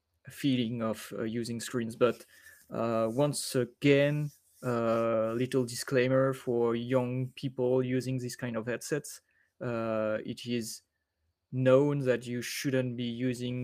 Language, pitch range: English, 110-130 Hz